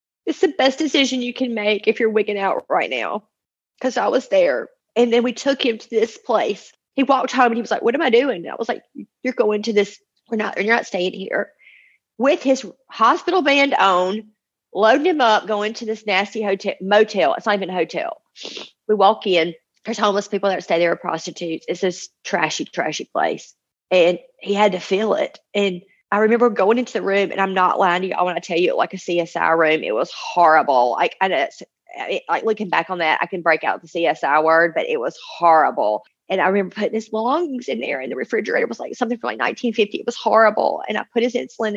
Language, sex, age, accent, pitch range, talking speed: English, female, 30-49, American, 190-265 Hz, 230 wpm